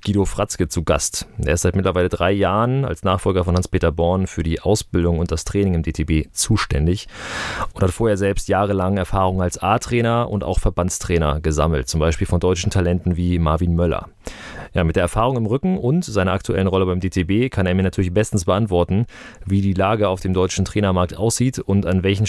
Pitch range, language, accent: 90-105 Hz, German, German